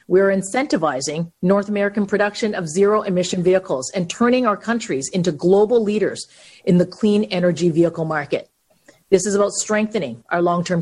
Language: English